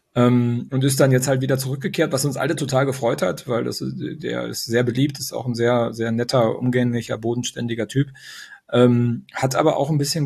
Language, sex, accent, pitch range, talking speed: German, male, German, 115-135 Hz, 210 wpm